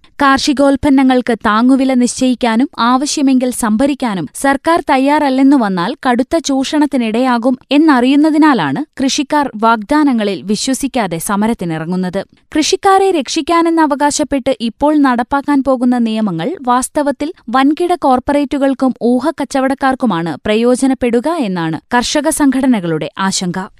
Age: 20-39